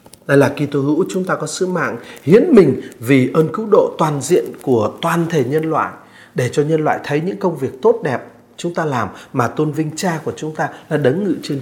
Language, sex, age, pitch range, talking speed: Vietnamese, male, 30-49, 140-195 Hz, 240 wpm